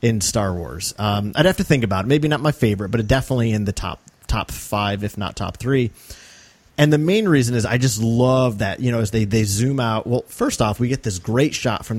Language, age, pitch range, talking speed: English, 30-49, 105-130 Hz, 250 wpm